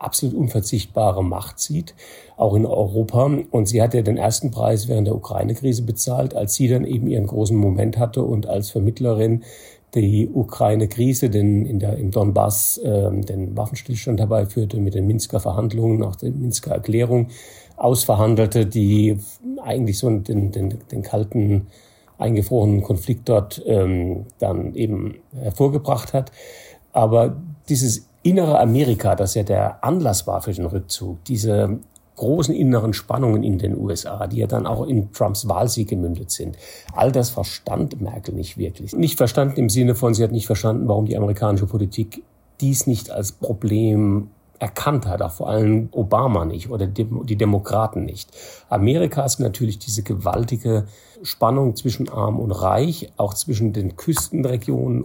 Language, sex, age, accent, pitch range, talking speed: German, male, 40-59, German, 105-125 Hz, 155 wpm